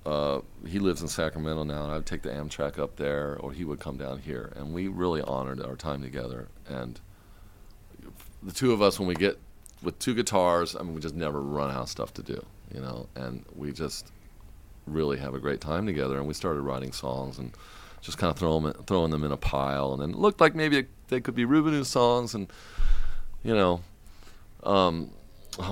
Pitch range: 75-105 Hz